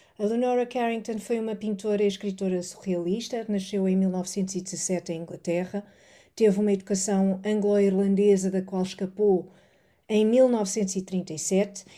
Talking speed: 115 wpm